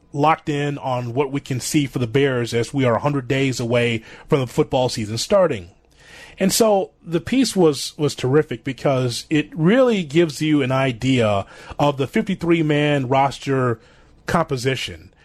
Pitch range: 125-155 Hz